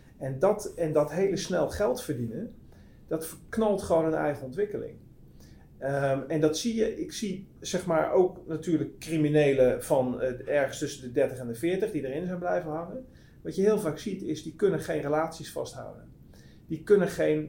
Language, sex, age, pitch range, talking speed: English, male, 40-59, 135-170 Hz, 180 wpm